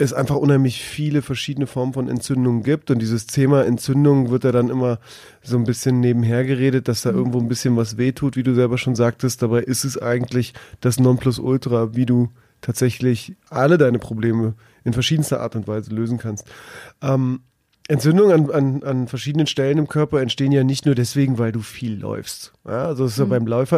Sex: male